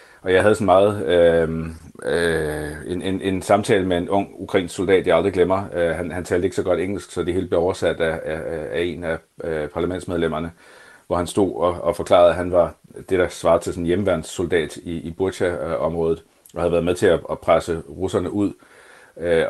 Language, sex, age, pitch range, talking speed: Danish, male, 40-59, 85-95 Hz, 210 wpm